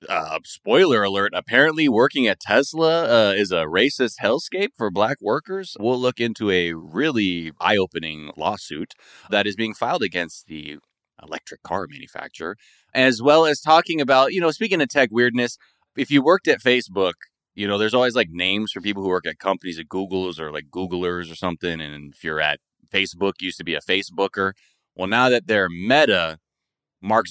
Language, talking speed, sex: English, 180 wpm, male